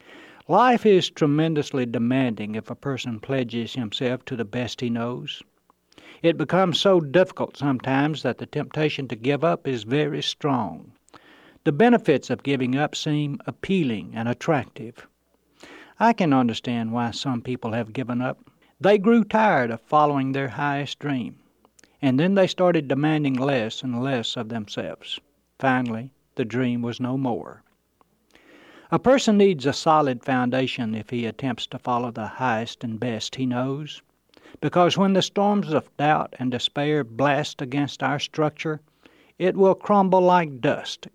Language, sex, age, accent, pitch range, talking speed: English, male, 60-79, American, 125-155 Hz, 150 wpm